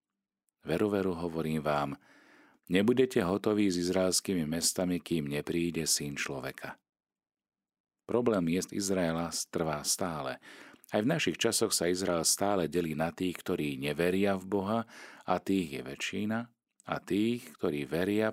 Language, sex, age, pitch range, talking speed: Slovak, male, 40-59, 80-100 Hz, 130 wpm